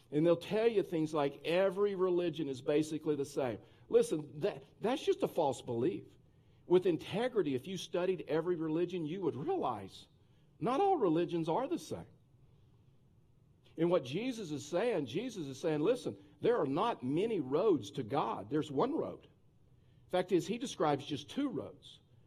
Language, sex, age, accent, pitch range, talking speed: English, male, 50-69, American, 135-180 Hz, 165 wpm